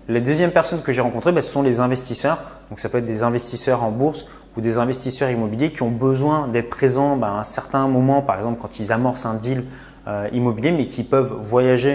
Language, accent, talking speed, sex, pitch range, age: French, French, 230 wpm, male, 120-150 Hz, 20-39